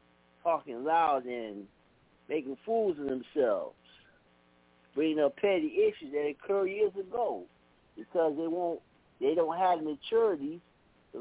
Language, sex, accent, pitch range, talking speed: English, male, American, 130-200 Hz, 125 wpm